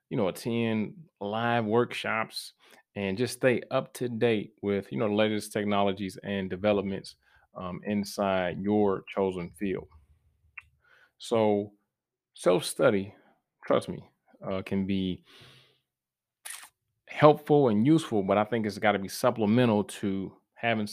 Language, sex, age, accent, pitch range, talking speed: English, male, 30-49, American, 95-115 Hz, 125 wpm